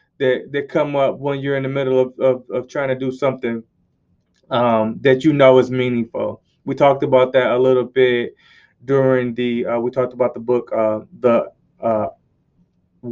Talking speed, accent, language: 185 wpm, American, English